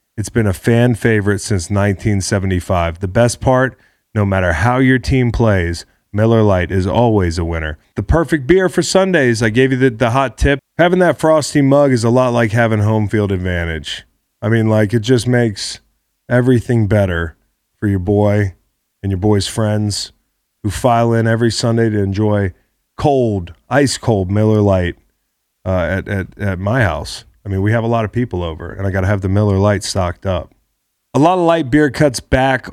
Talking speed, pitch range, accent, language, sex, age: 195 wpm, 95-120 Hz, American, English, male, 30-49